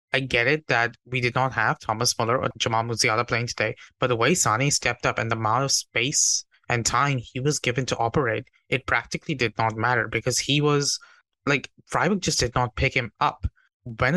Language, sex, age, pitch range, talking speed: English, male, 20-39, 115-135 Hz, 210 wpm